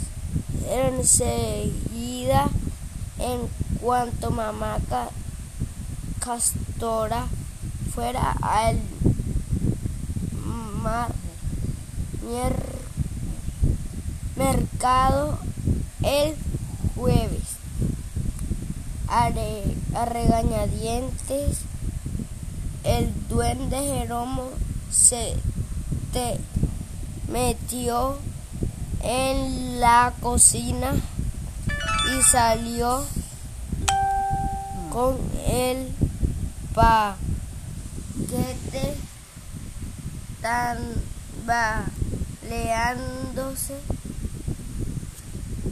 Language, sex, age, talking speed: Spanish, female, 20-39, 40 wpm